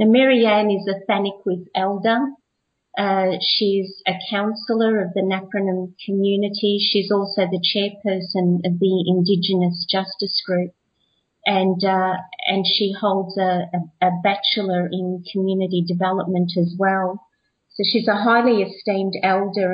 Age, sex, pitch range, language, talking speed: 40-59, female, 185-220 Hz, English, 135 wpm